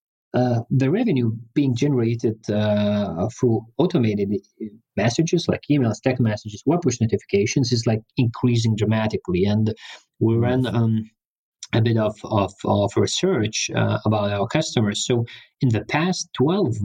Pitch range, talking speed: 105-125 Hz, 140 wpm